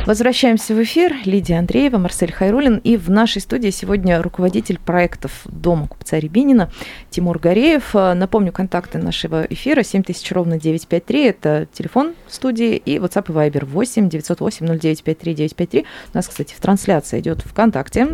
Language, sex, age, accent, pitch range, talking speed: Russian, female, 20-39, native, 165-215 Hz, 145 wpm